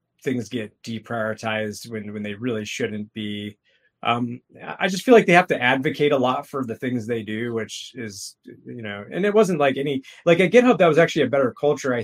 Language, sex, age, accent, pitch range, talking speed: English, male, 20-39, American, 115-140 Hz, 220 wpm